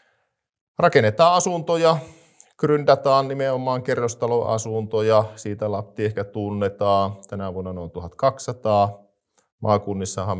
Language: Finnish